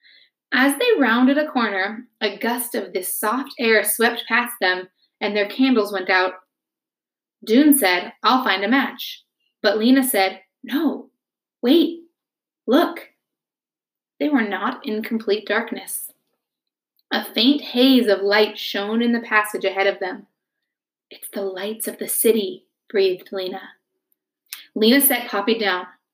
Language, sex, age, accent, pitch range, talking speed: English, female, 20-39, American, 200-255 Hz, 140 wpm